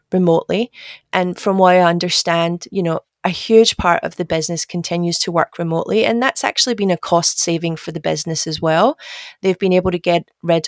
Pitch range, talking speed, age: 165-190 Hz, 200 wpm, 30-49